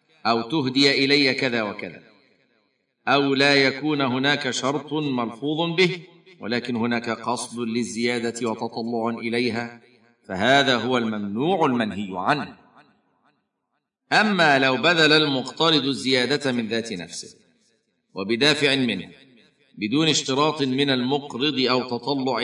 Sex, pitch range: male, 115-140 Hz